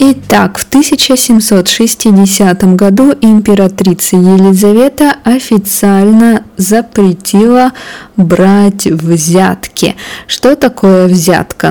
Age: 20-39